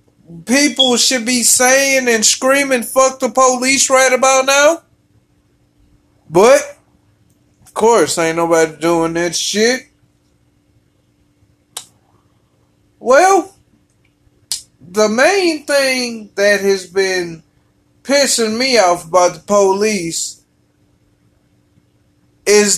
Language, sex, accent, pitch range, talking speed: English, male, American, 215-285 Hz, 90 wpm